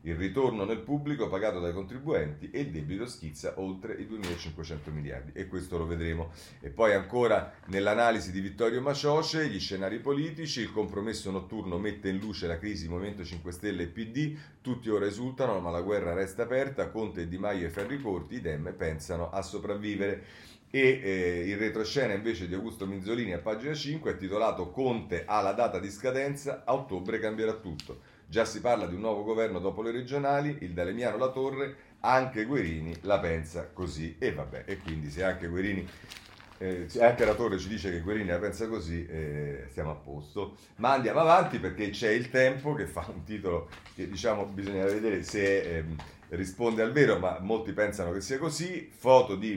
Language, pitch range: Italian, 90-120 Hz